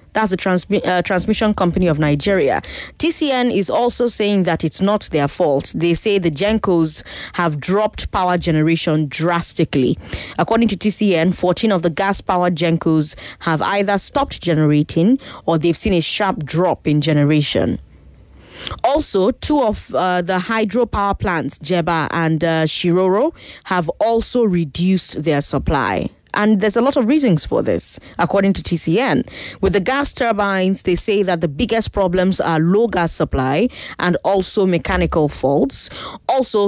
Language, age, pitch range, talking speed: English, 20-39, 165-205 Hz, 150 wpm